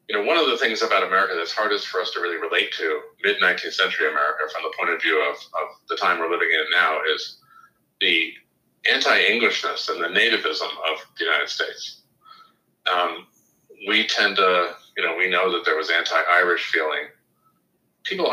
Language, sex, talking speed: English, male, 185 wpm